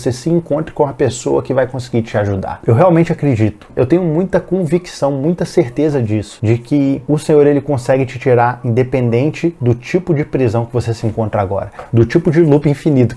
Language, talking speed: Portuguese, 200 wpm